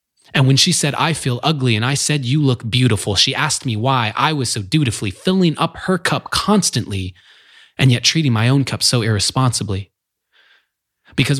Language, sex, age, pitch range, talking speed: English, male, 20-39, 105-140 Hz, 185 wpm